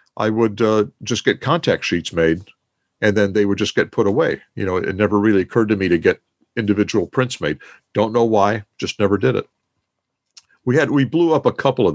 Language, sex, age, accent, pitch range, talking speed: English, male, 50-69, American, 95-110 Hz, 220 wpm